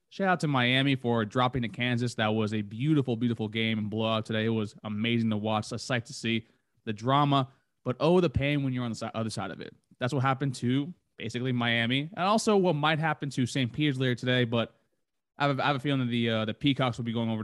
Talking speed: 255 wpm